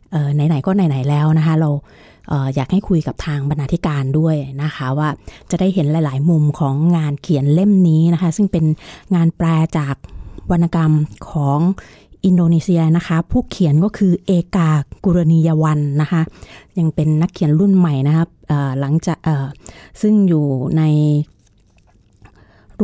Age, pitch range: 30-49, 145-175 Hz